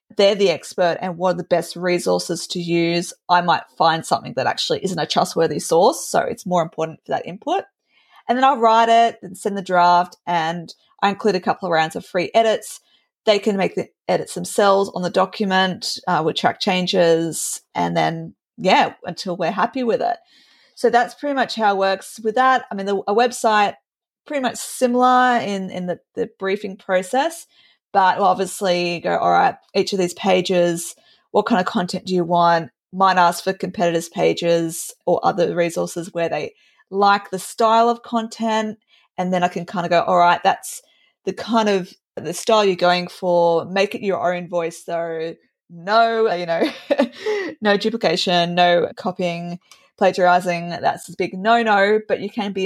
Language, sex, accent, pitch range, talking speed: English, female, Australian, 175-220 Hz, 185 wpm